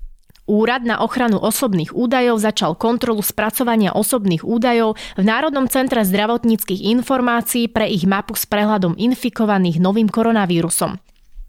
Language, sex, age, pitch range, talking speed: Slovak, female, 20-39, 195-245 Hz, 120 wpm